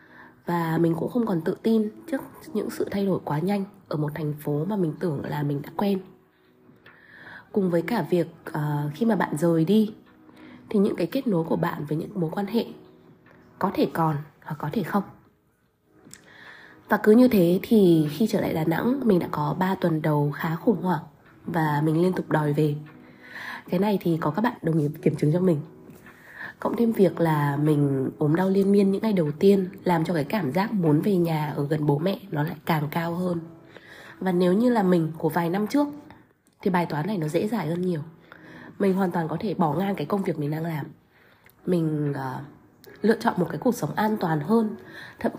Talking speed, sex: 215 wpm, female